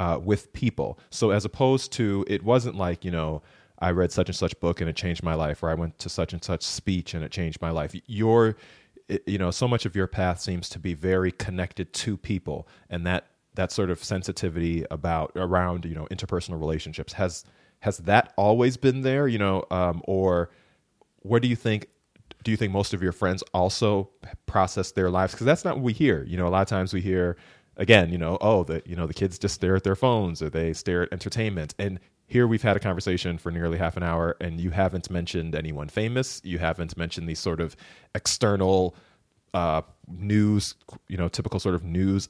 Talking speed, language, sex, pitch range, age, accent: 215 wpm, English, male, 85-100 Hz, 30-49, American